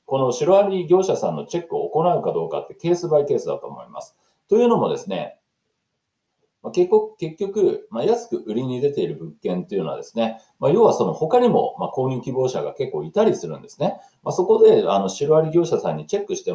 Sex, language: male, Japanese